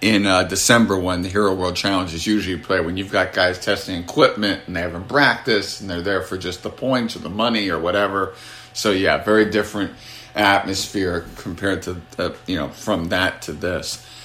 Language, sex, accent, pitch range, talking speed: English, male, American, 100-125 Hz, 200 wpm